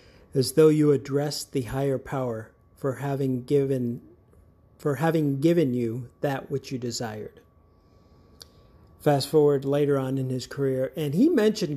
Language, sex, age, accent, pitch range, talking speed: English, male, 40-59, American, 125-150 Hz, 145 wpm